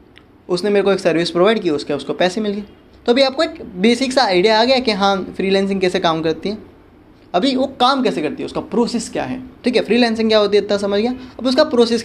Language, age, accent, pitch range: Hindi, 20-39, native, 160-220 Hz